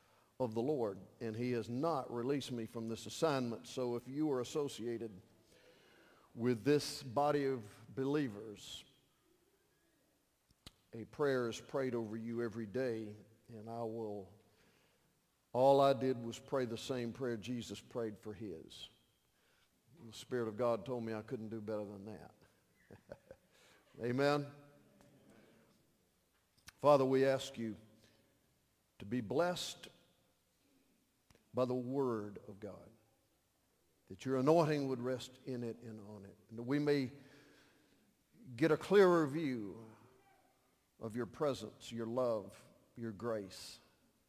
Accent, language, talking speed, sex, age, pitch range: American, English, 130 wpm, male, 50-69, 110-135 Hz